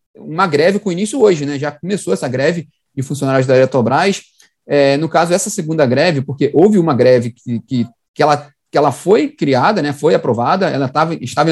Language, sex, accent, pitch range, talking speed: Portuguese, male, Brazilian, 140-175 Hz, 205 wpm